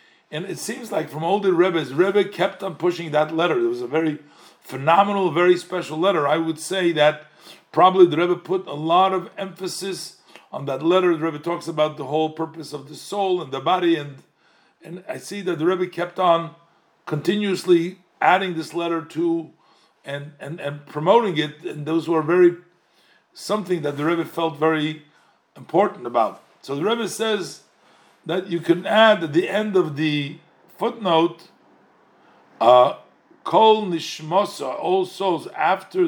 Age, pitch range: 50-69, 160-190 Hz